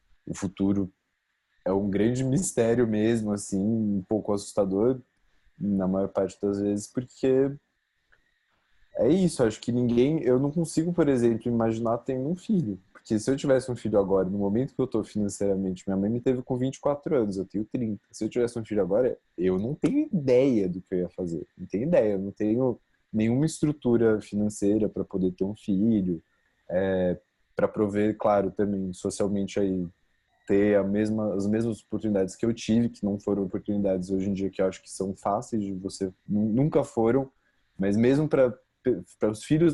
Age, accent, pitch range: 20-39, Brazilian, 100-125 Hz